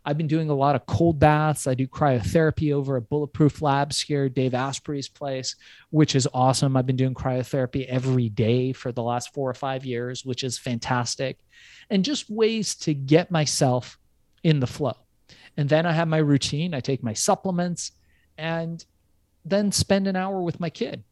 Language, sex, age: English, male, 30-49